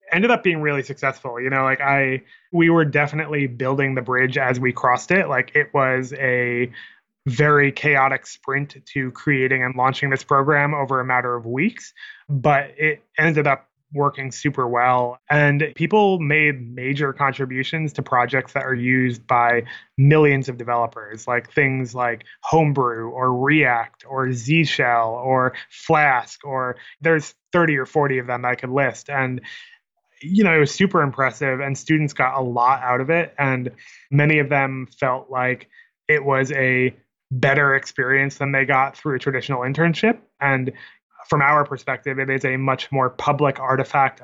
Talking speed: 170 wpm